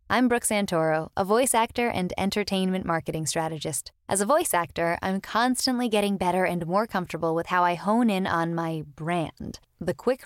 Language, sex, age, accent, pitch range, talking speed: English, female, 10-29, American, 170-220 Hz, 180 wpm